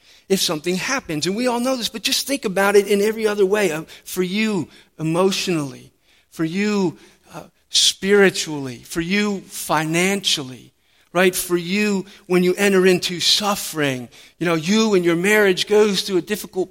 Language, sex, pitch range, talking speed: English, male, 165-210 Hz, 160 wpm